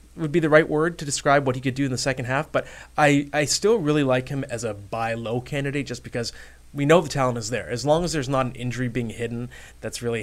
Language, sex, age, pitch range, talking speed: English, male, 20-39, 120-155 Hz, 265 wpm